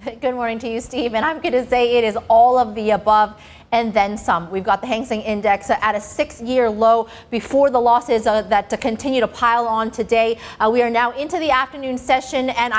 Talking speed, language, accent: 230 wpm, English, American